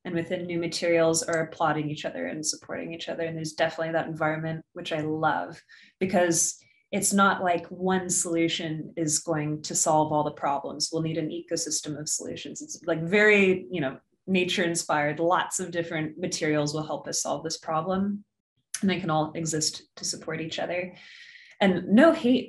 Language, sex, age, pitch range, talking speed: English, female, 20-39, 160-185 Hz, 180 wpm